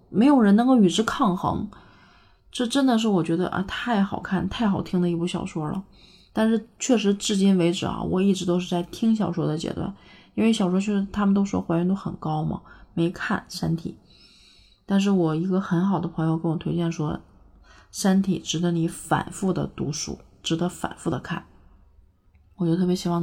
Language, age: Chinese, 30-49